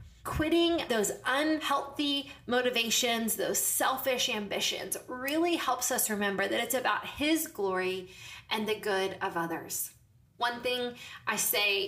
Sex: female